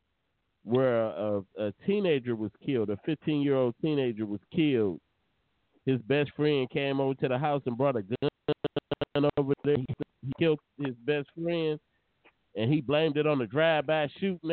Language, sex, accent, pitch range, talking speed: English, male, American, 135-165 Hz, 165 wpm